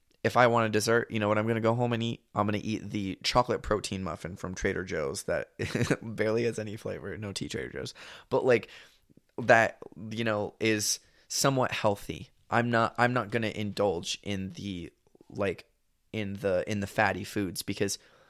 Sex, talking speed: male, 185 wpm